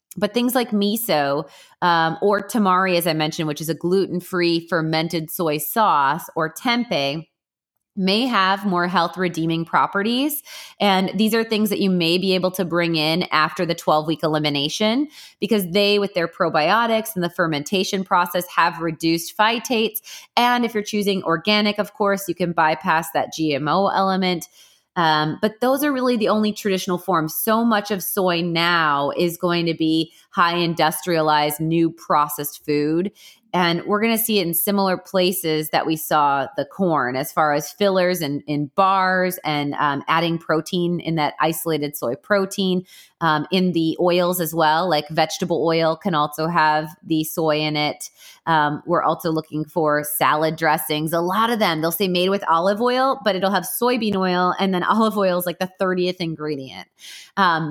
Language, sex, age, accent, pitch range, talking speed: English, female, 20-39, American, 160-195 Hz, 175 wpm